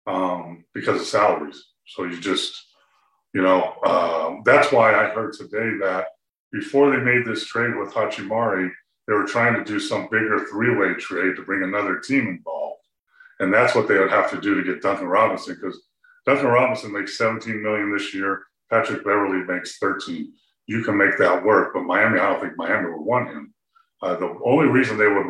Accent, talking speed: American, 190 wpm